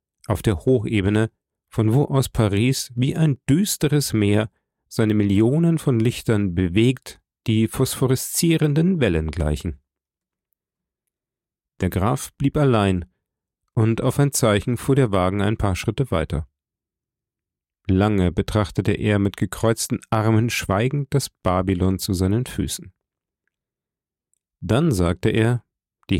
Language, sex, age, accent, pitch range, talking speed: German, male, 40-59, German, 95-130 Hz, 115 wpm